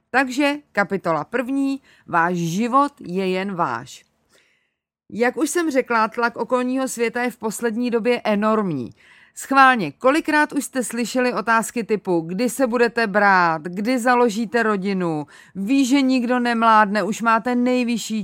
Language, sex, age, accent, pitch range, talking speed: Czech, female, 40-59, native, 190-245 Hz, 135 wpm